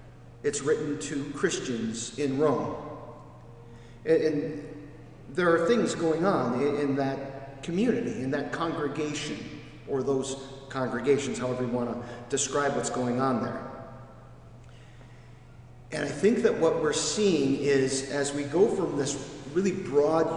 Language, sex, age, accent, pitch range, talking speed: English, male, 40-59, American, 130-155 Hz, 135 wpm